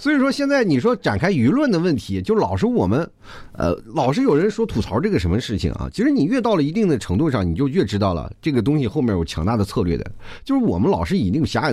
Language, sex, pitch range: Chinese, male, 95-160 Hz